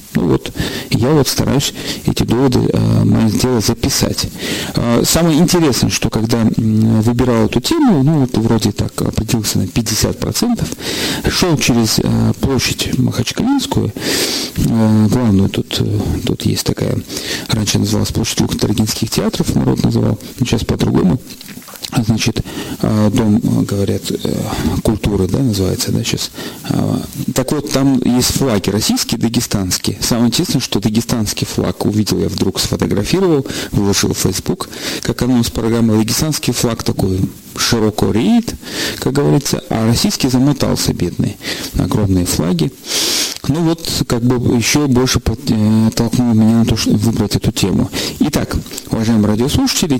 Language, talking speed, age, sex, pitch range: Russian, 125 wpm, 40-59, male, 105-130 Hz